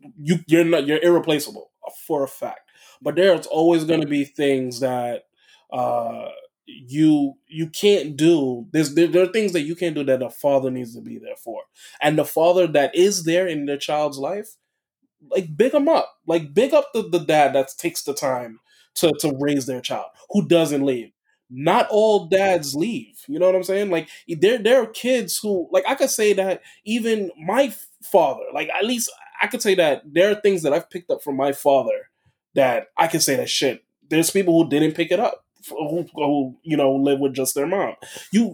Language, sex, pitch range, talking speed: English, male, 140-190 Hz, 205 wpm